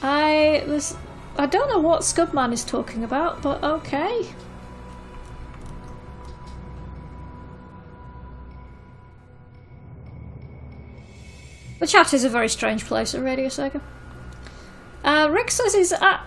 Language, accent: English, British